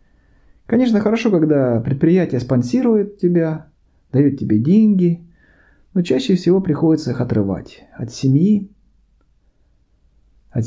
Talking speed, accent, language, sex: 100 wpm, native, Russian, male